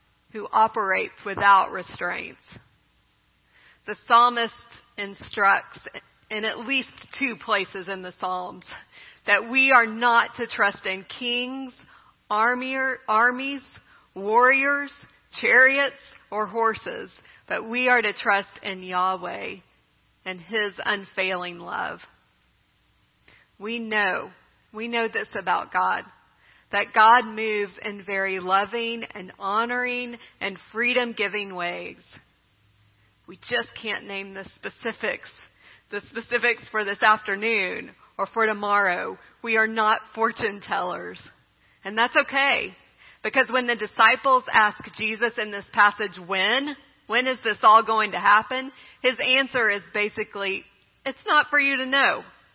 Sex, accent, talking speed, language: female, American, 120 wpm, English